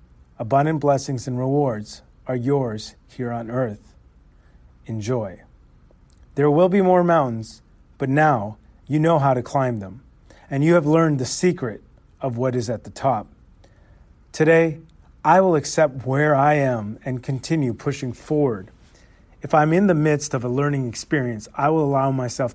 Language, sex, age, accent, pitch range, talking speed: English, male, 40-59, American, 105-145 Hz, 155 wpm